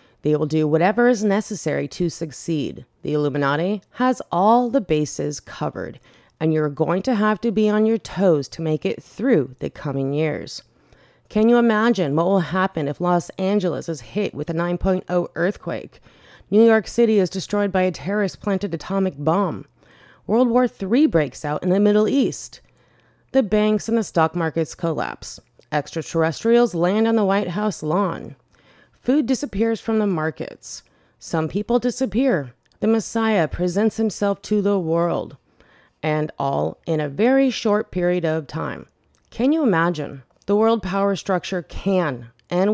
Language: English